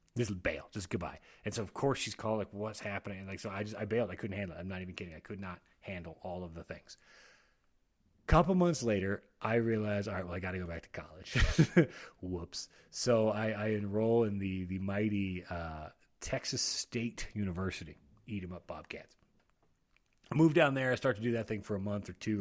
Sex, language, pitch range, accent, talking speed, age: male, English, 100-125 Hz, American, 220 wpm, 30-49